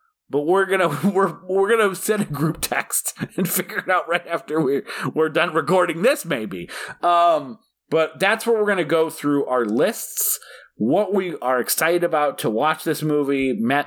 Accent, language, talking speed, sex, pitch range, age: American, English, 190 wpm, male, 125-195 Hz, 30-49